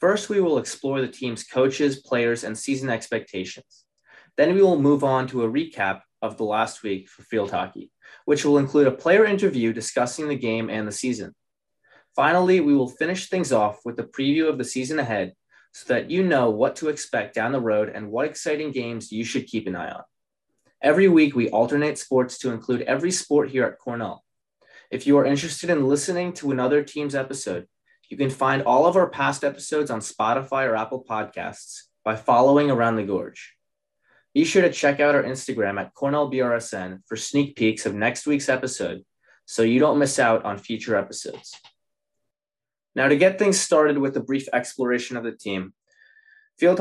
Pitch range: 120-150 Hz